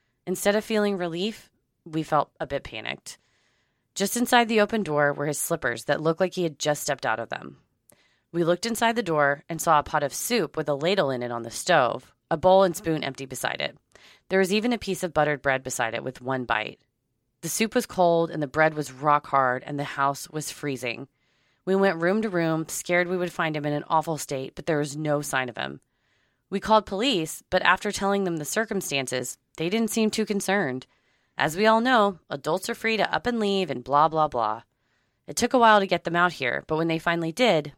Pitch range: 135-195 Hz